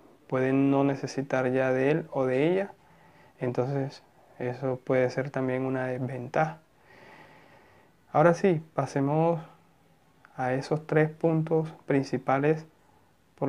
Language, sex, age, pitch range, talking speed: Spanish, male, 20-39, 125-150 Hz, 110 wpm